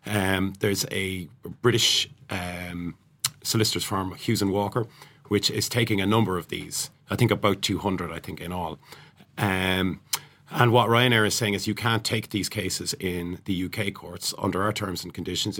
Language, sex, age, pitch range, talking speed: English, male, 40-59, 95-115 Hz, 175 wpm